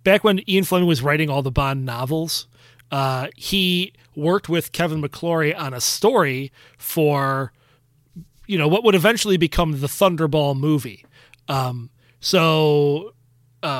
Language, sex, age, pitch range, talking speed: English, male, 30-49, 135-175 Hz, 140 wpm